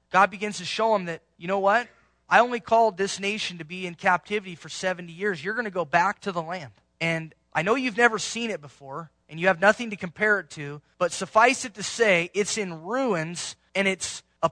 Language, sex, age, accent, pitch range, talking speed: English, male, 20-39, American, 150-210 Hz, 230 wpm